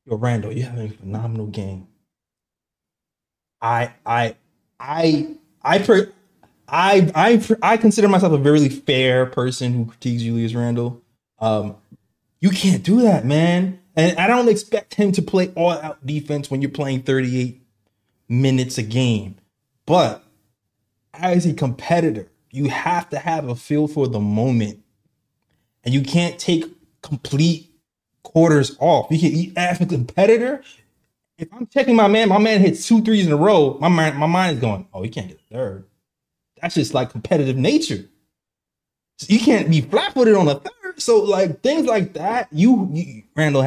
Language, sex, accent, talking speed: English, male, American, 160 wpm